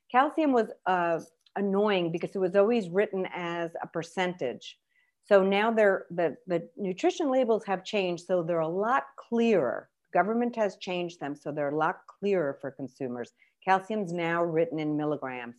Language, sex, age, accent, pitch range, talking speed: English, female, 50-69, American, 150-185 Hz, 160 wpm